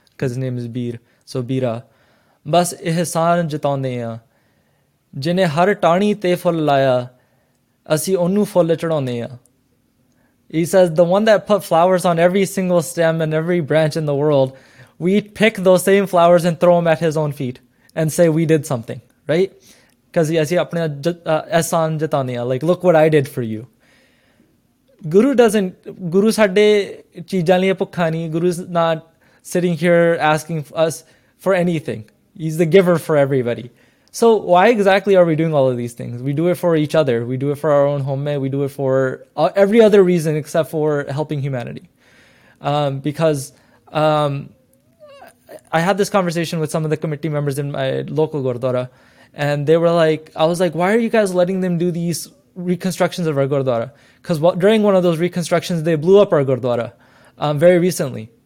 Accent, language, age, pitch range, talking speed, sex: Indian, English, 20-39, 135-180 Hz, 155 wpm, male